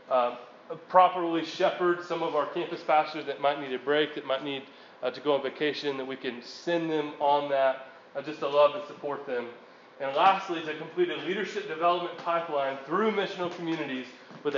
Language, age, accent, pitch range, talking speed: English, 20-39, American, 140-175 Hz, 200 wpm